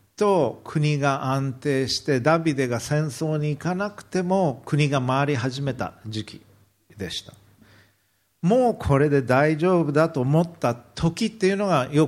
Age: 50-69